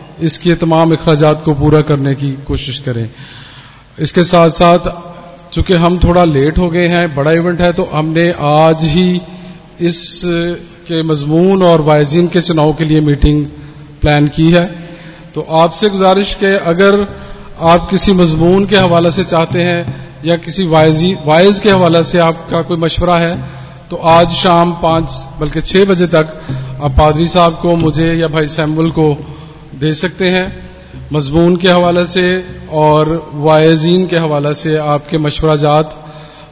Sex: male